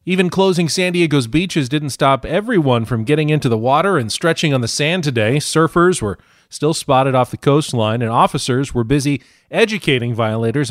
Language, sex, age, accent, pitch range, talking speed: English, male, 40-59, American, 125-165 Hz, 180 wpm